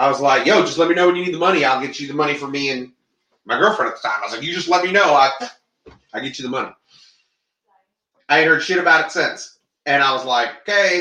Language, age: English, 30-49